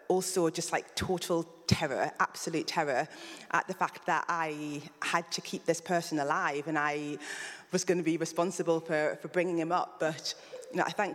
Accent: British